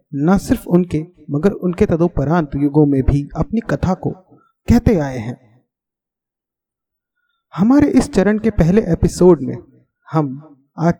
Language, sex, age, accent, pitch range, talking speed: Hindi, male, 30-49, native, 145-200 Hz, 130 wpm